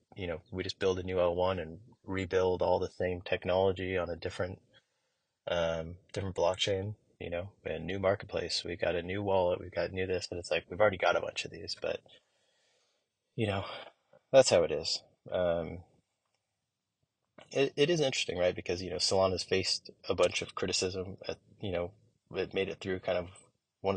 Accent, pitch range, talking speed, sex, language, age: American, 90-105 Hz, 195 wpm, male, English, 20-39